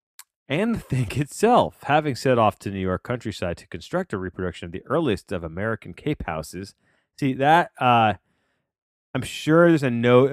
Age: 30-49